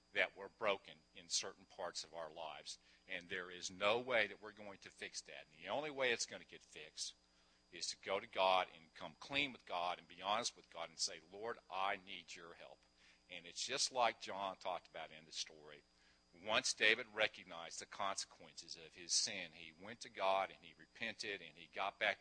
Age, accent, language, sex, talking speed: 50-69, American, English, male, 215 wpm